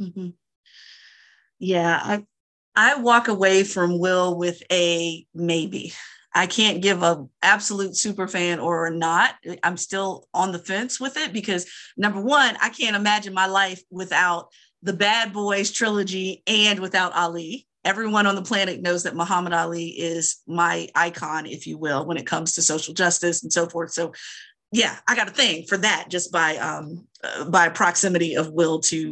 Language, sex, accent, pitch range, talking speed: English, female, American, 170-250 Hz, 170 wpm